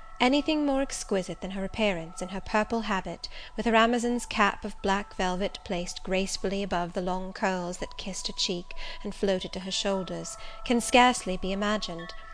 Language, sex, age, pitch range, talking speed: English, female, 30-49, 185-225 Hz, 175 wpm